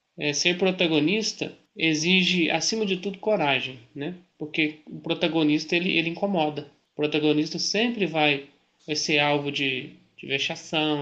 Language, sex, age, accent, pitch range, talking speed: Portuguese, male, 20-39, Brazilian, 145-175 Hz, 135 wpm